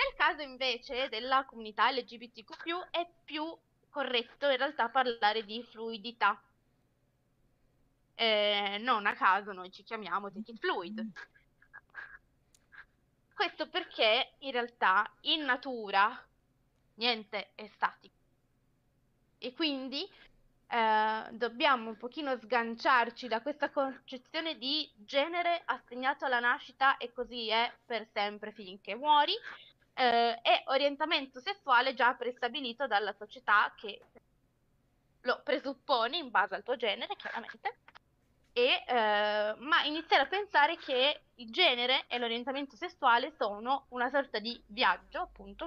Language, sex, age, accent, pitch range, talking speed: Italian, female, 20-39, native, 220-295 Hz, 115 wpm